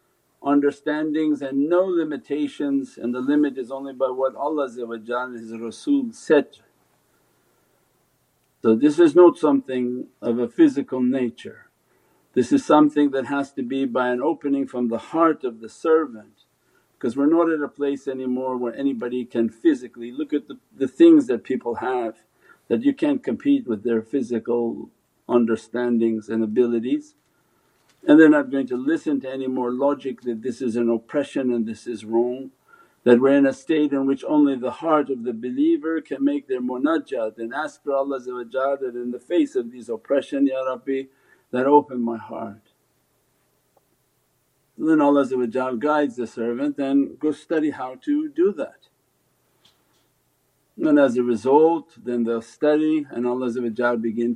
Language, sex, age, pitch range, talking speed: English, male, 50-69, 120-150 Hz, 160 wpm